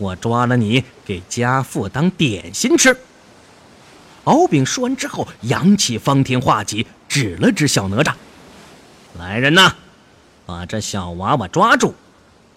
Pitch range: 105-145 Hz